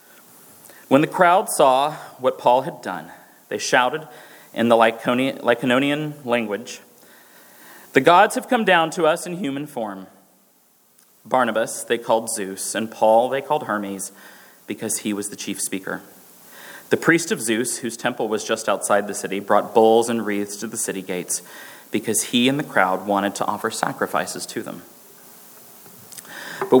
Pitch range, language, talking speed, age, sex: 110-155 Hz, English, 155 wpm, 30-49, male